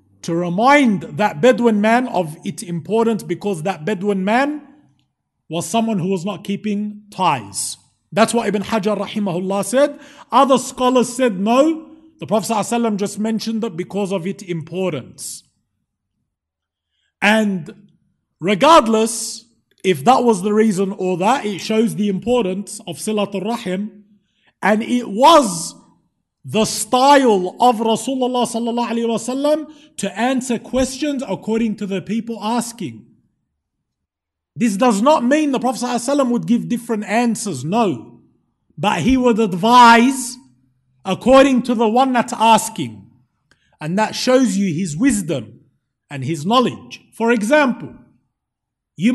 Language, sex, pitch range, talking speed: English, male, 195-255 Hz, 125 wpm